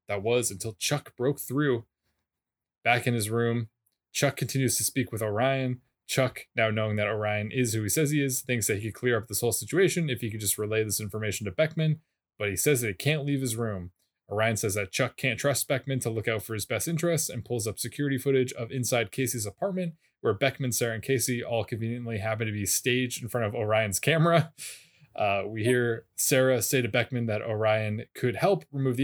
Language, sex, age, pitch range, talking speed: English, male, 20-39, 110-150 Hz, 220 wpm